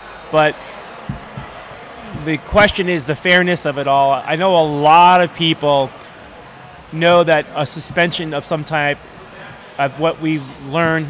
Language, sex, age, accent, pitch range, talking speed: English, male, 20-39, American, 145-165 Hz, 140 wpm